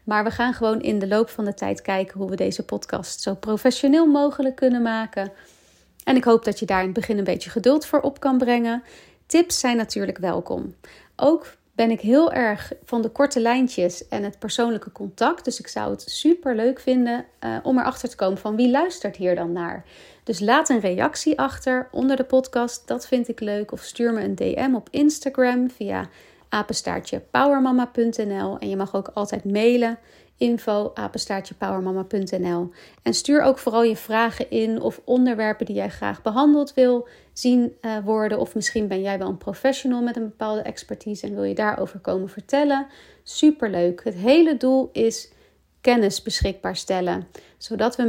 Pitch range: 205-255 Hz